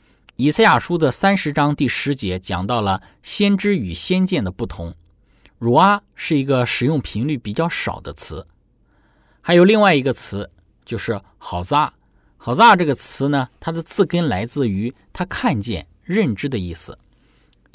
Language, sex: Chinese, male